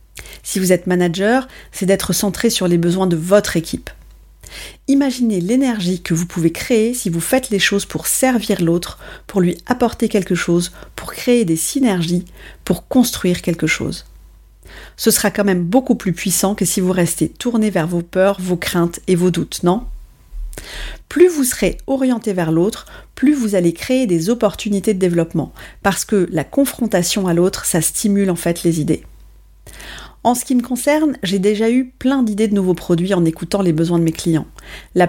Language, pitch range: French, 175-220 Hz